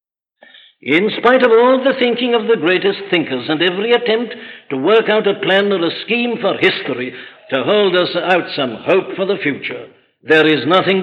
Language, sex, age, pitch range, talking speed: English, male, 60-79, 145-195 Hz, 190 wpm